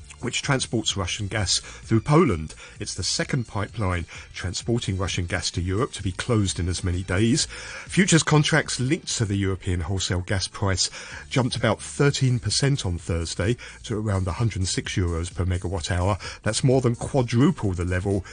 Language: English